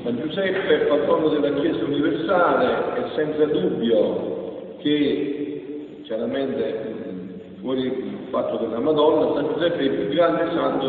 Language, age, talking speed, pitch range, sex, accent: Italian, 50-69, 125 wpm, 120-190 Hz, male, native